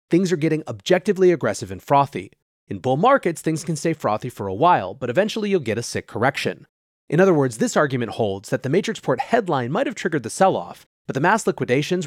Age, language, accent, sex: 30-49, English, American, male